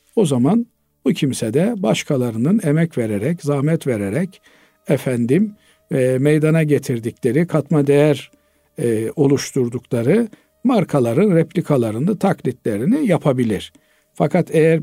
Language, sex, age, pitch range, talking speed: Turkish, male, 60-79, 130-185 Hz, 95 wpm